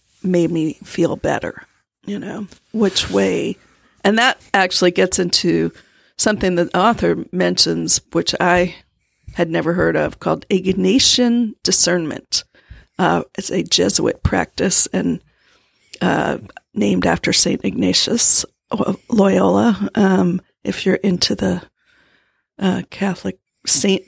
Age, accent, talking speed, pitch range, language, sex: 50-69, American, 115 wpm, 175-215 Hz, English, female